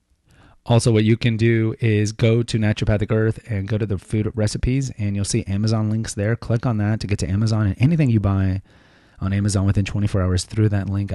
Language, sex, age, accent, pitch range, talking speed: English, male, 30-49, American, 105-130 Hz, 220 wpm